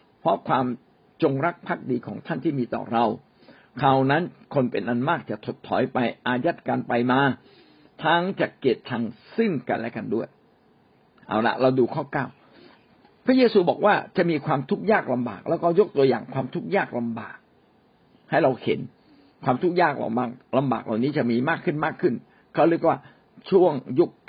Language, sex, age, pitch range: Thai, male, 60-79, 125-180 Hz